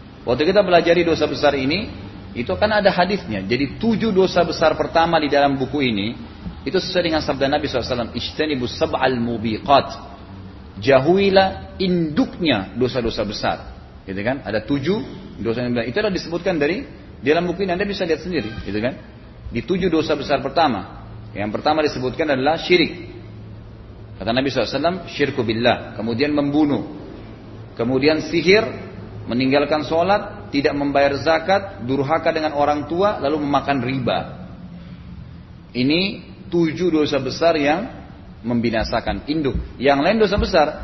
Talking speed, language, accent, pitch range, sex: 135 wpm, Indonesian, native, 115-160 Hz, male